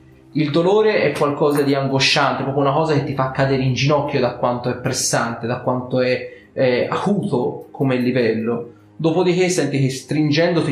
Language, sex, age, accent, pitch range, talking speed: Italian, male, 30-49, native, 120-145 Hz, 170 wpm